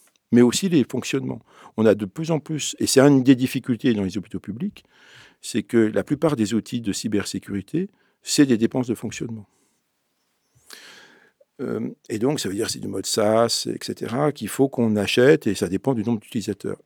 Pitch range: 100-135 Hz